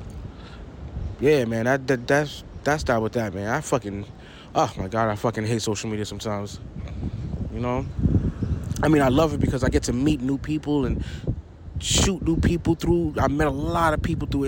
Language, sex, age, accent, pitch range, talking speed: English, male, 20-39, American, 100-130 Hz, 195 wpm